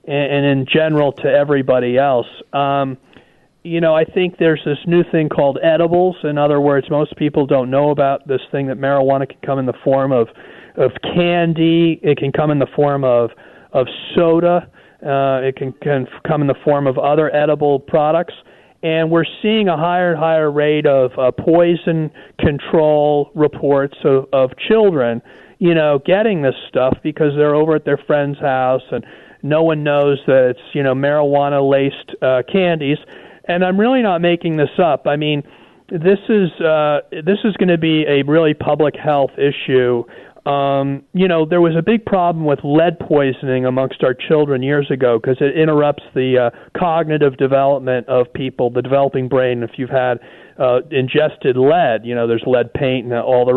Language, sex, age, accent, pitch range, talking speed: English, male, 40-59, American, 135-165 Hz, 185 wpm